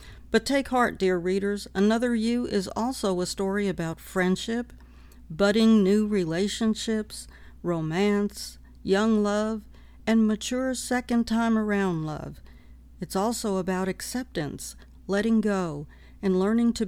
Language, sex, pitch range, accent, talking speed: English, female, 170-220 Hz, American, 120 wpm